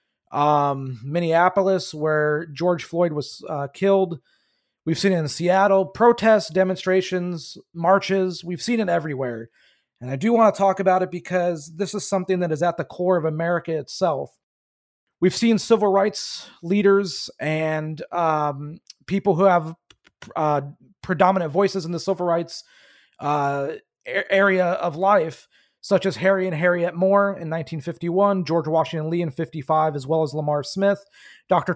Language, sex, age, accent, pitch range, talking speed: English, male, 30-49, American, 155-190 Hz, 150 wpm